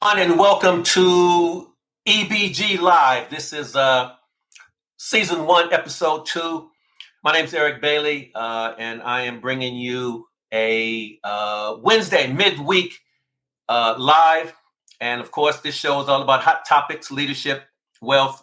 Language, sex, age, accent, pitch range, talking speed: English, male, 50-69, American, 125-155 Hz, 130 wpm